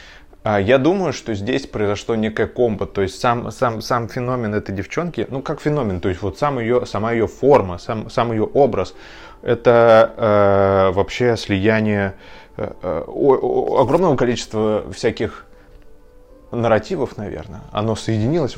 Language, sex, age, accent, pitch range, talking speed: Russian, male, 20-39, native, 100-125 Hz, 135 wpm